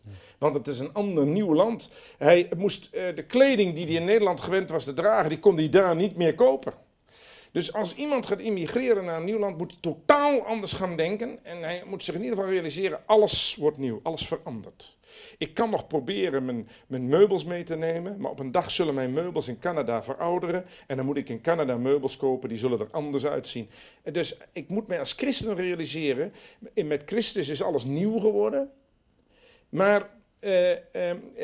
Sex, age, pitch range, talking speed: male, 50-69, 150-215 Hz, 200 wpm